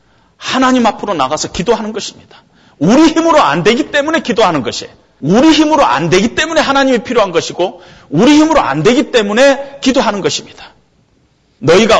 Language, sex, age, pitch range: Korean, male, 40-59, 205-280 Hz